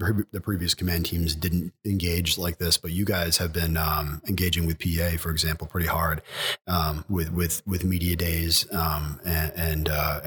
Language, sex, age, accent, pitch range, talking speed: English, male, 30-49, American, 80-90 Hz, 180 wpm